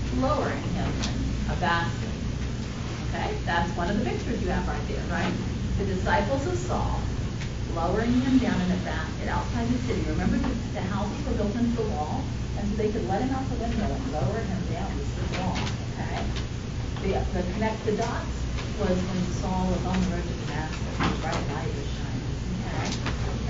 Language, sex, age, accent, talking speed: English, female, 40-59, American, 195 wpm